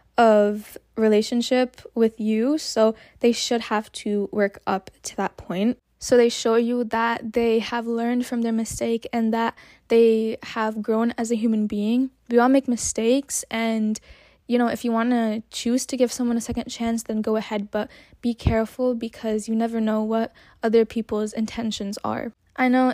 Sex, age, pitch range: female, 10-29, 220-245 Hz